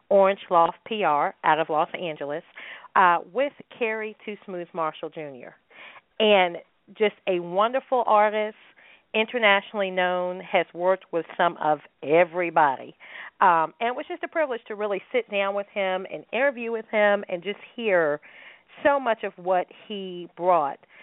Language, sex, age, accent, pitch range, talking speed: English, female, 40-59, American, 165-210 Hz, 150 wpm